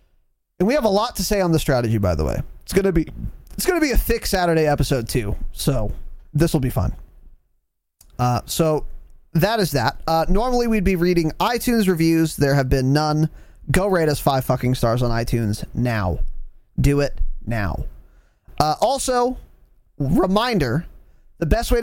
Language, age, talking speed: English, 20-39, 180 wpm